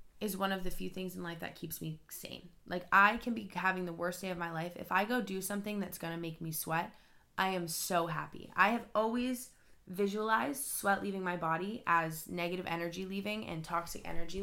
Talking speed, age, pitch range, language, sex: 220 wpm, 20-39, 170-210 Hz, English, female